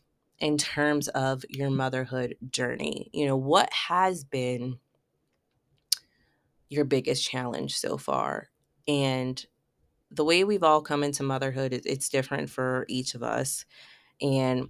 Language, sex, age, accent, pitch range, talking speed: English, female, 20-39, American, 130-155 Hz, 125 wpm